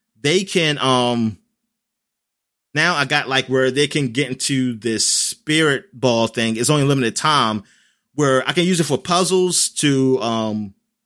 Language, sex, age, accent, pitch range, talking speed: English, male, 30-49, American, 115-160 Hz, 155 wpm